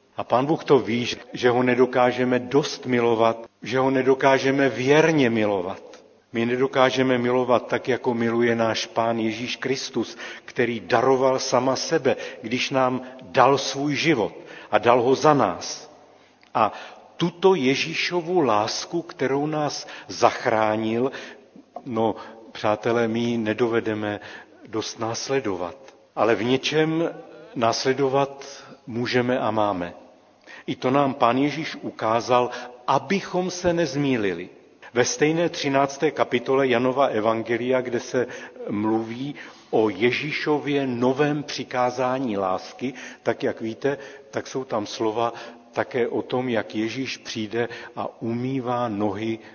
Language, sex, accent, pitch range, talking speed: Czech, male, native, 115-135 Hz, 120 wpm